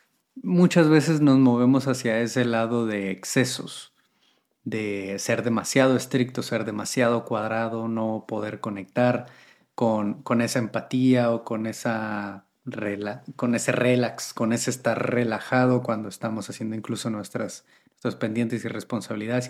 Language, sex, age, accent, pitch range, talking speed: Spanish, male, 30-49, Mexican, 110-130 Hz, 125 wpm